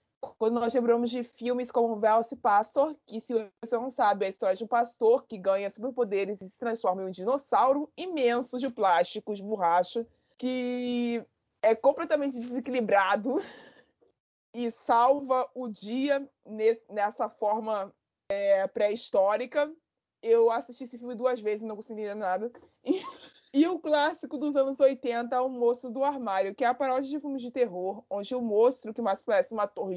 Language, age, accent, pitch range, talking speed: Portuguese, 20-39, Brazilian, 215-265 Hz, 170 wpm